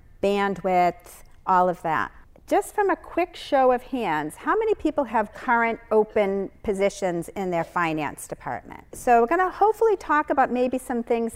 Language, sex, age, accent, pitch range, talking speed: English, female, 50-69, American, 190-265 Hz, 165 wpm